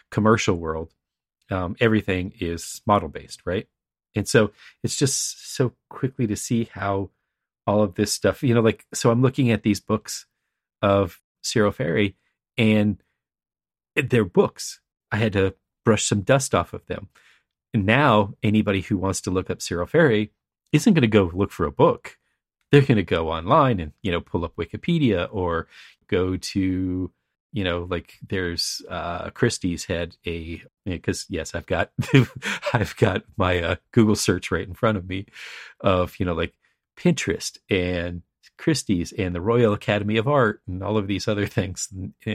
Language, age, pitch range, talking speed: English, 40-59, 90-115 Hz, 170 wpm